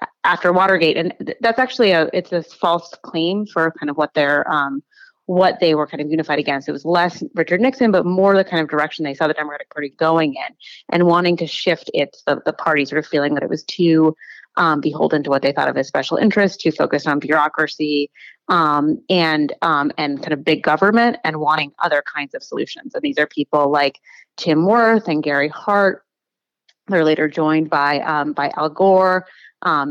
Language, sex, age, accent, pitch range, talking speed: English, female, 30-49, American, 150-185 Hz, 210 wpm